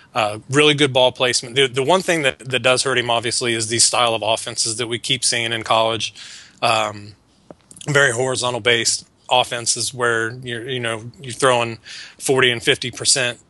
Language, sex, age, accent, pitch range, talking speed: English, male, 30-49, American, 115-130 Hz, 180 wpm